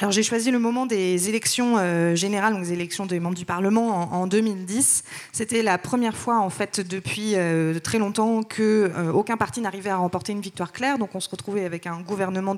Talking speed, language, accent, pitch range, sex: 215 wpm, French, French, 175-220 Hz, female